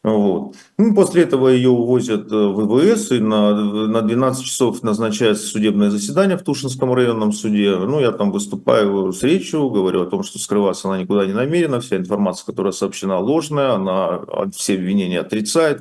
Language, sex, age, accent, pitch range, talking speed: Russian, male, 40-59, native, 100-140 Hz, 165 wpm